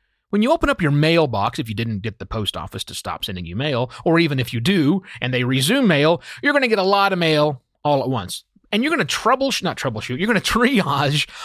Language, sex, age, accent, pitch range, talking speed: English, male, 30-49, American, 130-200 Hz, 255 wpm